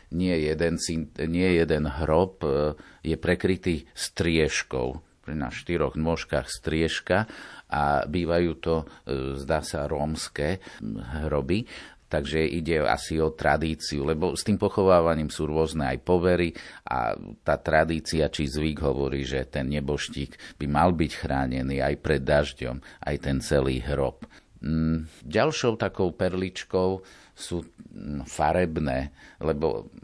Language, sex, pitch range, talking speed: Slovak, male, 75-85 Hz, 115 wpm